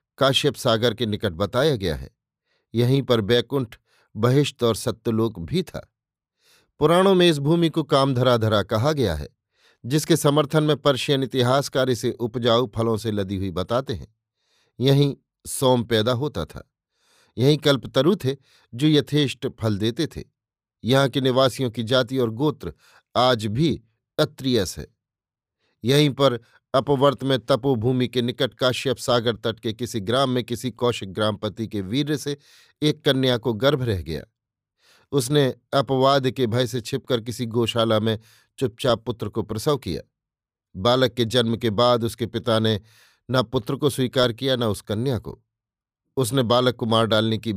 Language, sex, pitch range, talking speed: Hindi, male, 115-135 Hz, 155 wpm